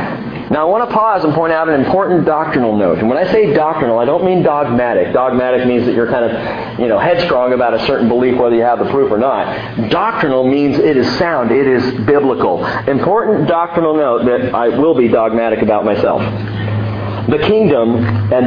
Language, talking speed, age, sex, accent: English, 200 wpm, 40-59, male, American